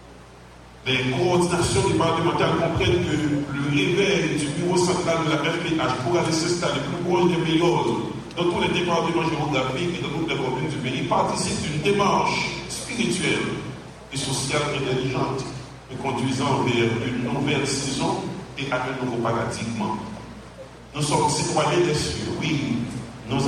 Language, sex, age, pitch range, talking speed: English, male, 50-69, 130-170 Hz, 160 wpm